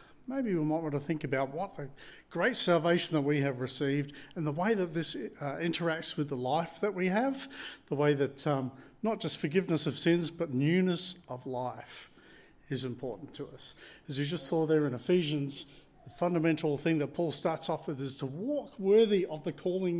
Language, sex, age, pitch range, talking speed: English, male, 50-69, 145-180 Hz, 200 wpm